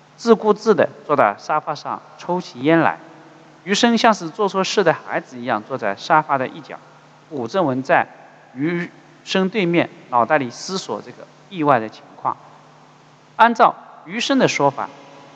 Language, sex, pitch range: Chinese, male, 135-190 Hz